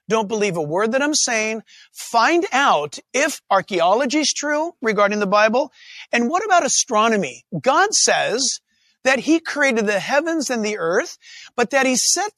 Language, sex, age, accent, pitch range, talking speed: English, male, 50-69, American, 205-275 Hz, 165 wpm